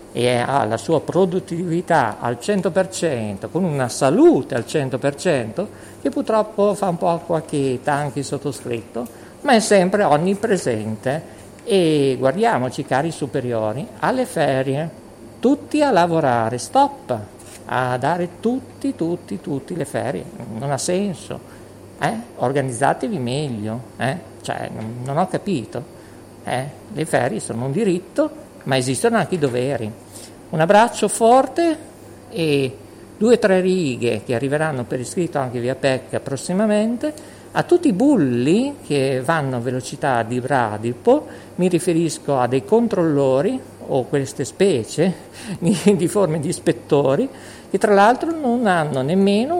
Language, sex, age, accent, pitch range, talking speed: Italian, male, 50-69, native, 130-200 Hz, 130 wpm